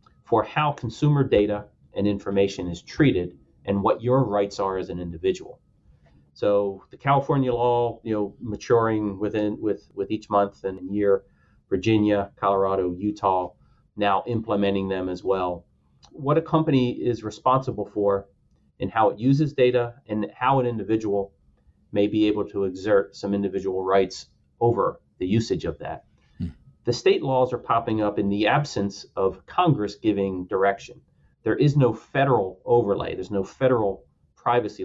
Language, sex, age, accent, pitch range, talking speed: English, male, 30-49, American, 95-120 Hz, 150 wpm